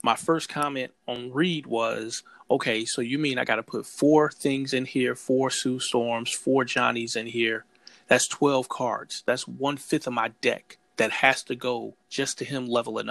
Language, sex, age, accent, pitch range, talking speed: English, male, 30-49, American, 120-140 Hz, 190 wpm